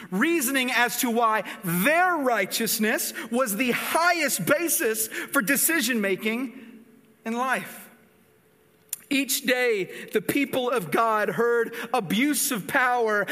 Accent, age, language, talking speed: American, 40-59, English, 110 wpm